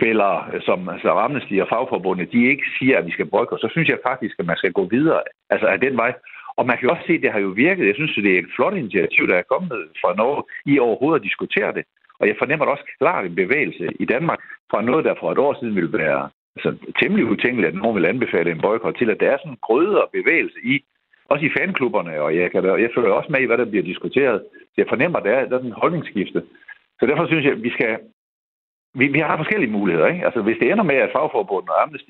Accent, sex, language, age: native, male, Danish, 60-79